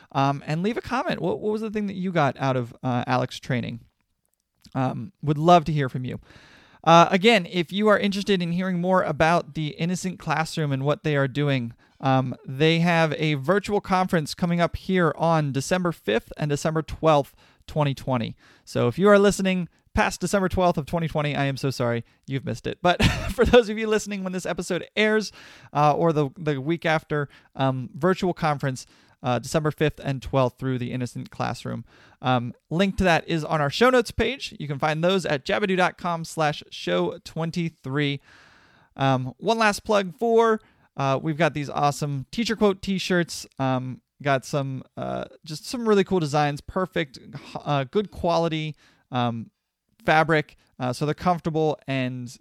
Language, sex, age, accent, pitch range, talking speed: English, male, 30-49, American, 135-180 Hz, 175 wpm